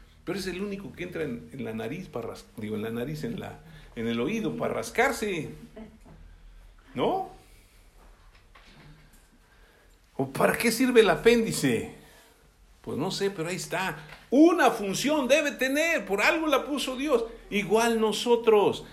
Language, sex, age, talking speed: Spanish, male, 60-79, 150 wpm